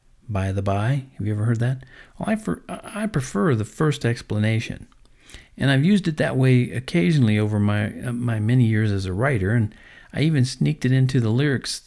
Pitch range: 105-125 Hz